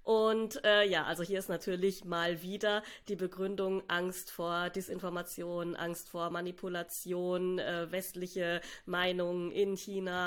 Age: 20-39